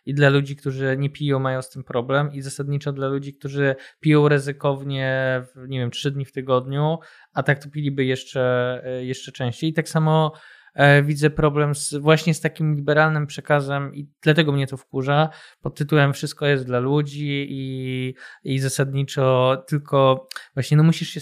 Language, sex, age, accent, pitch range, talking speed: Polish, male, 20-39, native, 130-145 Hz, 170 wpm